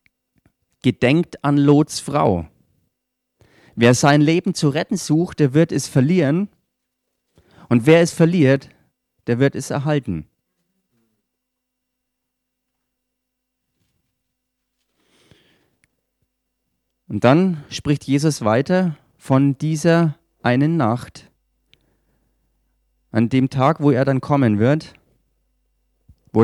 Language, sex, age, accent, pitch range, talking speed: German, male, 40-59, German, 115-155 Hz, 90 wpm